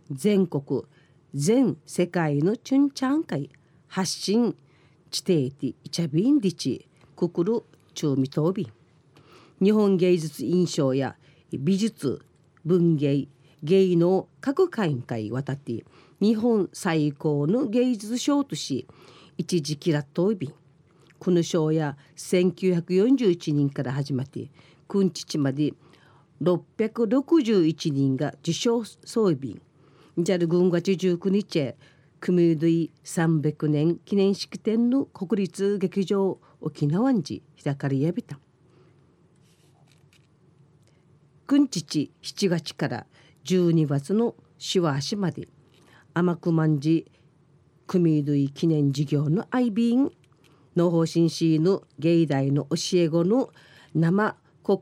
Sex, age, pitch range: female, 40-59, 145-190 Hz